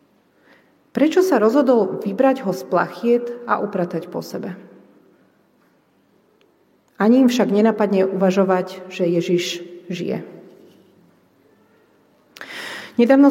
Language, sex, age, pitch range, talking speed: Slovak, female, 40-59, 190-230 Hz, 90 wpm